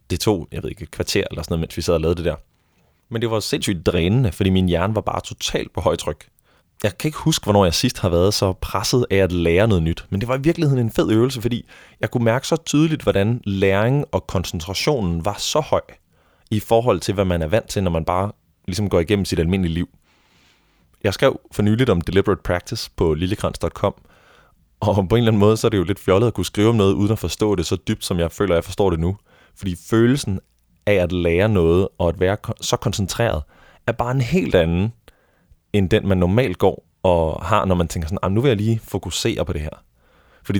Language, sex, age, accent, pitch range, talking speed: Danish, male, 20-39, native, 90-110 Hz, 235 wpm